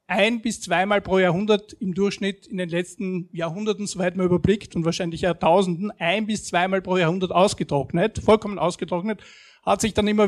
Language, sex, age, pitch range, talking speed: German, male, 50-69, 175-205 Hz, 170 wpm